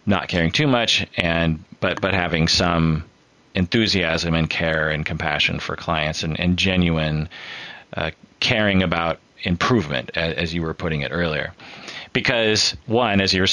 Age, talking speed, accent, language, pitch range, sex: 30-49, 150 wpm, American, English, 80-95 Hz, male